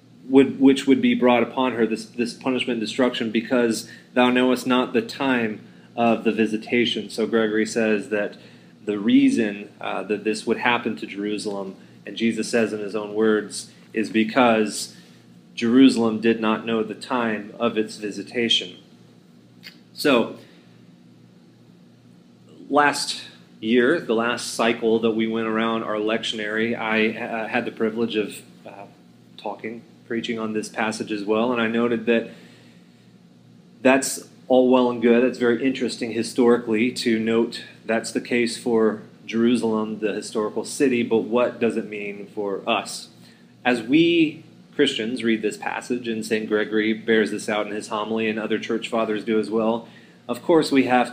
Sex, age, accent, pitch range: male, 30-49, American, 105-120 Hz